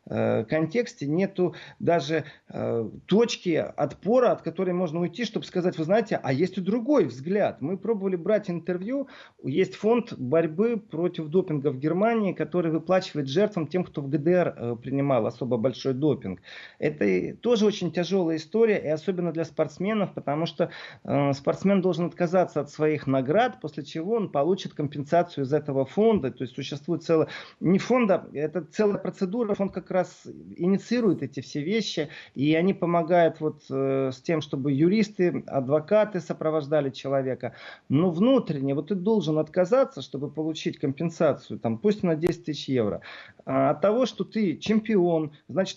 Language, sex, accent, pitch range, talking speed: Russian, male, native, 150-195 Hz, 150 wpm